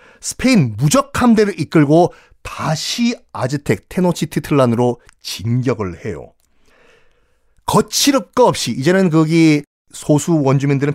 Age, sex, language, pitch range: 40-59, male, Korean, 125-205 Hz